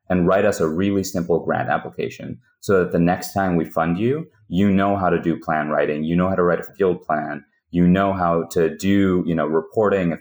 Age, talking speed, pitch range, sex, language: 30-49, 235 wpm, 85-120 Hz, male, English